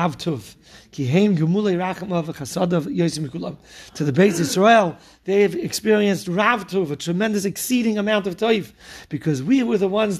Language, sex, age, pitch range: English, male, 40-59, 180-210 Hz